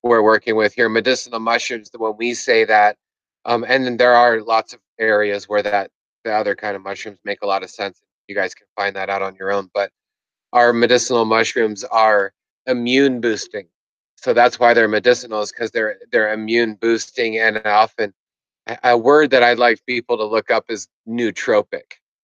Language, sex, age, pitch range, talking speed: English, male, 30-49, 105-125 Hz, 190 wpm